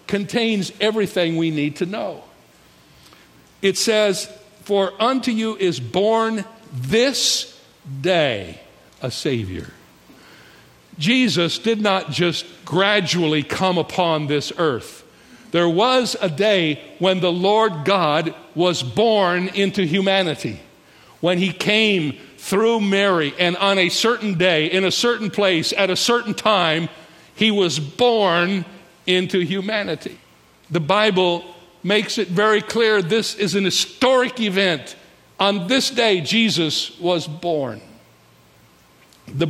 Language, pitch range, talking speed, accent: English, 165-210 Hz, 120 wpm, American